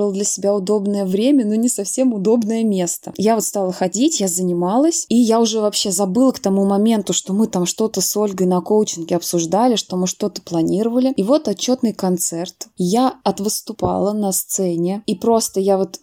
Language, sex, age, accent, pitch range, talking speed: Russian, female, 20-39, native, 185-210 Hz, 185 wpm